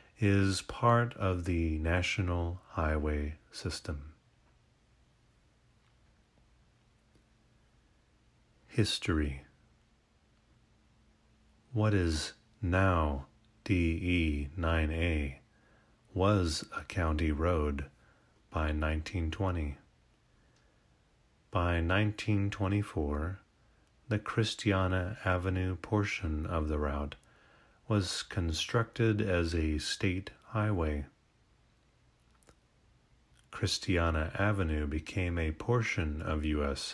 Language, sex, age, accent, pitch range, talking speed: English, male, 30-49, American, 80-100 Hz, 65 wpm